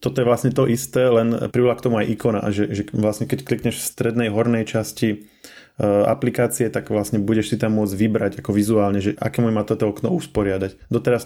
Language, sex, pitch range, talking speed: Slovak, male, 105-115 Hz, 210 wpm